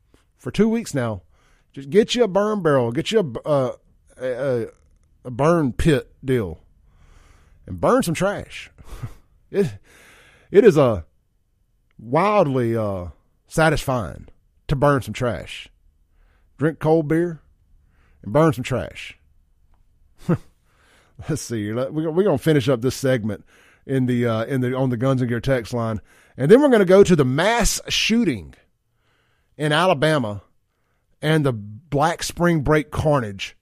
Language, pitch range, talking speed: English, 100-160 Hz, 145 wpm